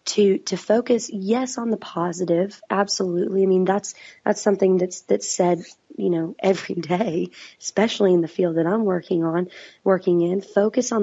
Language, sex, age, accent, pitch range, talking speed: English, female, 20-39, American, 180-210 Hz, 175 wpm